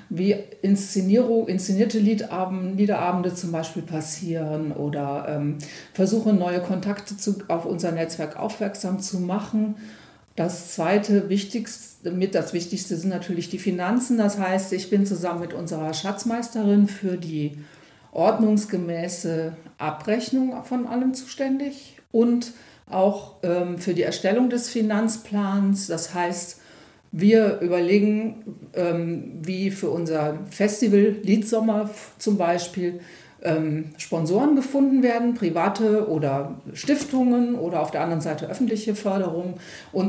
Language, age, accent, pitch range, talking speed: German, 50-69, German, 170-215 Hz, 110 wpm